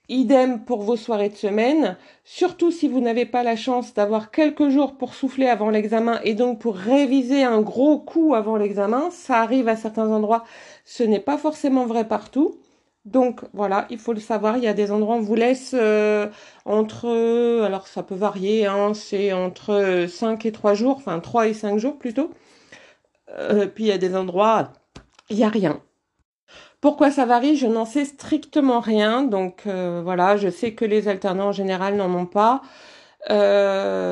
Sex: female